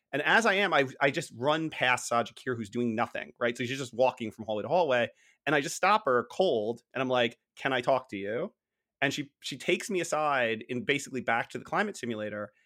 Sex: male